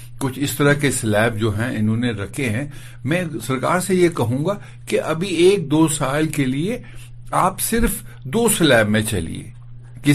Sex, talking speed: male, 185 wpm